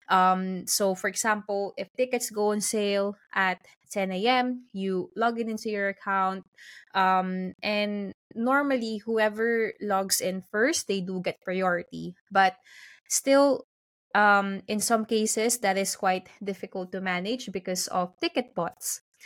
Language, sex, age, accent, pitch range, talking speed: English, female, 20-39, Filipino, 185-225 Hz, 140 wpm